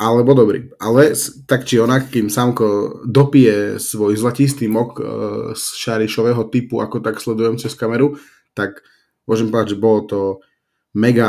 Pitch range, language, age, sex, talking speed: 105-115 Hz, Slovak, 20-39, male, 150 wpm